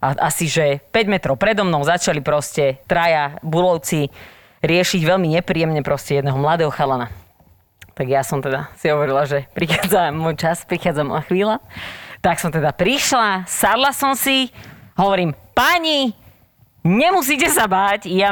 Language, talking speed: Slovak, 145 wpm